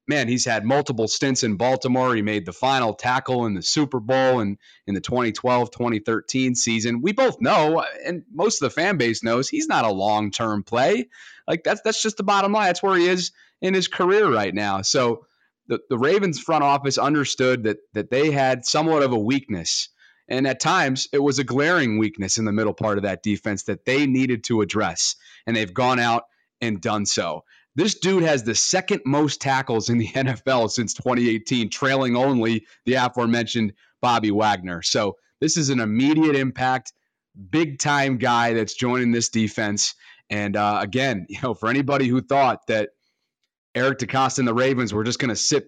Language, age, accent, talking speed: English, 30-49, American, 190 wpm